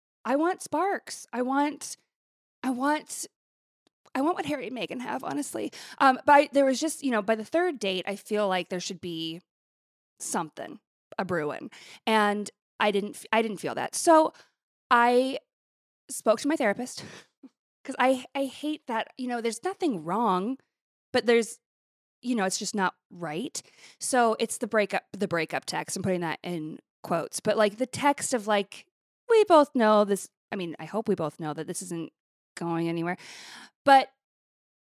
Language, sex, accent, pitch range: English, female, American, 190-275 Hz